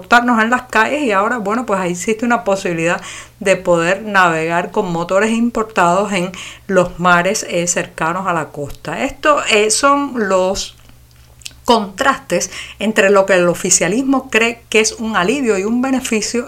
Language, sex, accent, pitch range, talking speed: Spanish, female, American, 175-225 Hz, 155 wpm